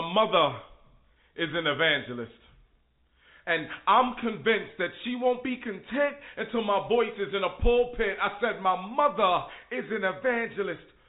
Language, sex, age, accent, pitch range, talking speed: English, male, 30-49, American, 220-275 Hz, 145 wpm